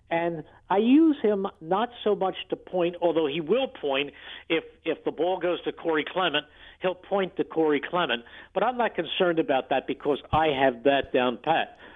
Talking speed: 190 wpm